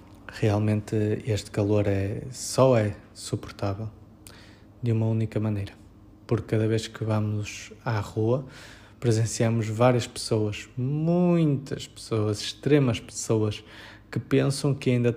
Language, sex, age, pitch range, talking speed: Portuguese, male, 20-39, 105-125 Hz, 110 wpm